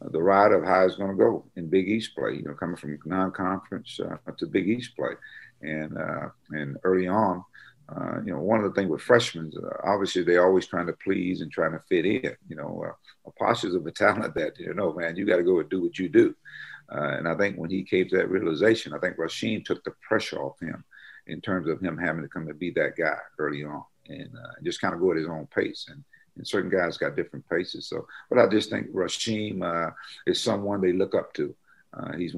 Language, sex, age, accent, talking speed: English, male, 50-69, American, 240 wpm